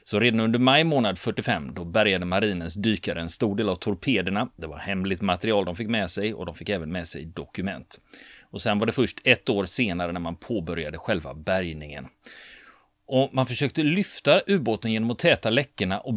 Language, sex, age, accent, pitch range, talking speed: Swedish, male, 30-49, native, 95-120 Hz, 195 wpm